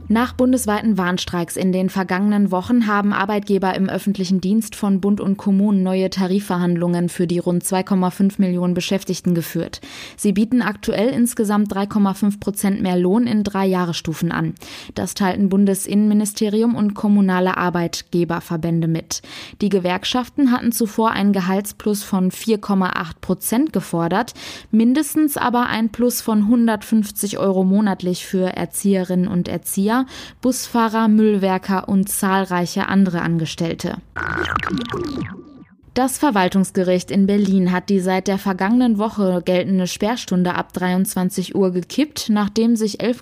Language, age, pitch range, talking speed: German, 20-39, 180-220 Hz, 125 wpm